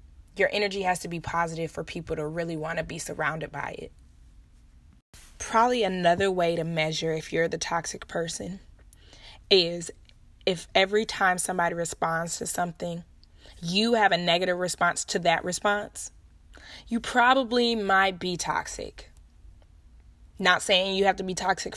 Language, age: English, 20-39